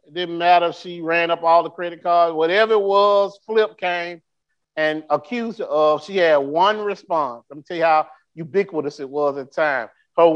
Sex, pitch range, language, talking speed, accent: male, 140-195 Hz, English, 210 wpm, American